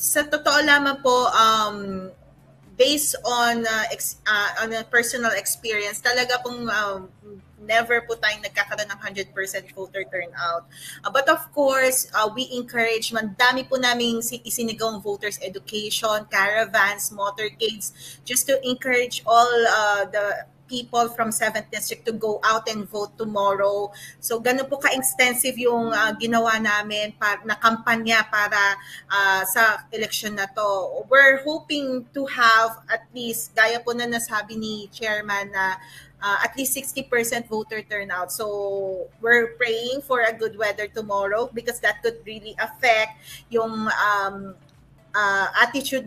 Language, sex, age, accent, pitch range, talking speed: Filipino, female, 20-39, native, 205-240 Hz, 145 wpm